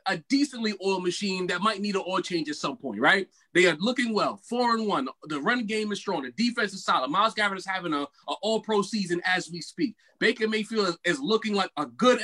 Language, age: English, 20-39